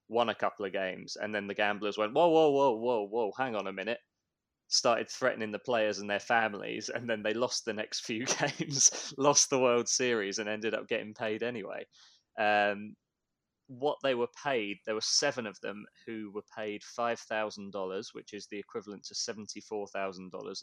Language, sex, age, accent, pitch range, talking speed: English, male, 20-39, British, 95-110 Hz, 205 wpm